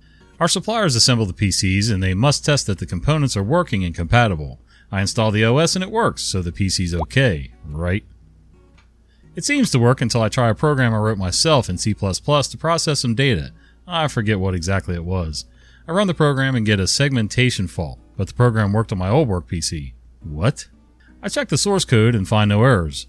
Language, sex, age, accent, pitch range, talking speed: English, male, 40-59, American, 90-135 Hz, 210 wpm